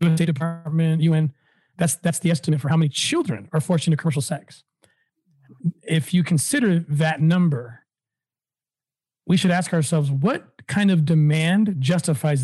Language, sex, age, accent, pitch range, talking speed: English, male, 40-59, American, 145-175 Hz, 145 wpm